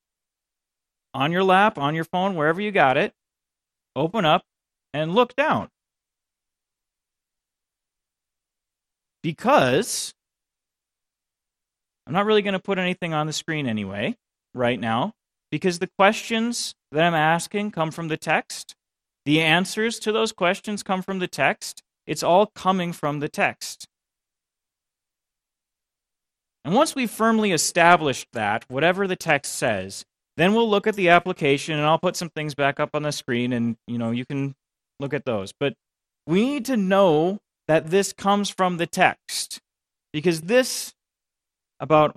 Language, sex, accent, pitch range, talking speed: English, male, American, 145-195 Hz, 145 wpm